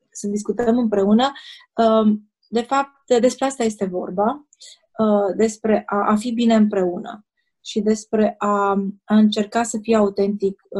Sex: female